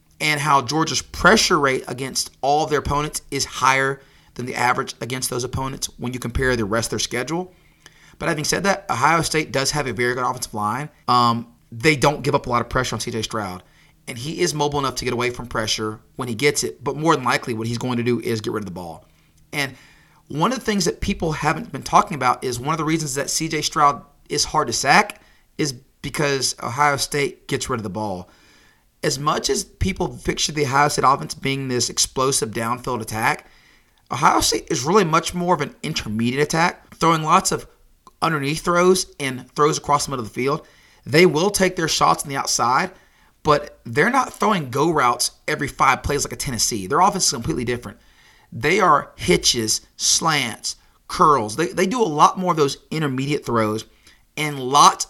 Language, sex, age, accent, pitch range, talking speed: English, male, 30-49, American, 120-155 Hz, 210 wpm